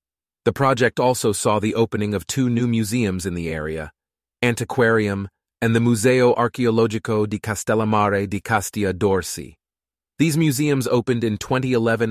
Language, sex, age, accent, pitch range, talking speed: English, male, 30-49, American, 95-120 Hz, 140 wpm